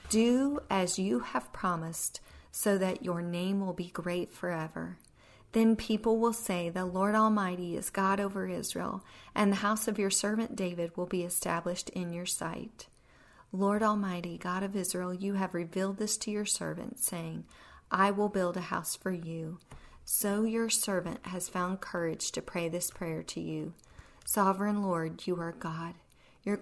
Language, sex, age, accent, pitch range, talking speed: English, female, 40-59, American, 175-210 Hz, 170 wpm